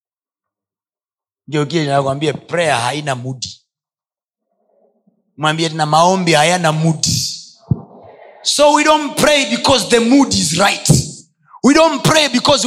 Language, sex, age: Swahili, male, 30-49